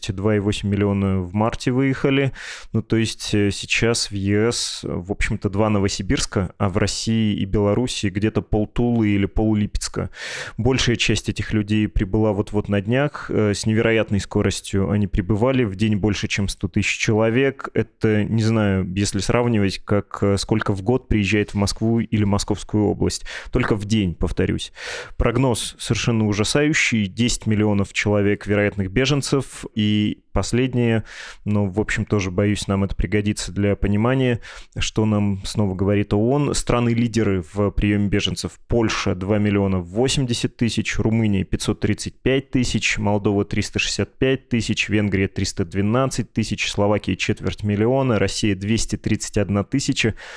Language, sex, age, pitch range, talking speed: Russian, male, 20-39, 100-115 Hz, 140 wpm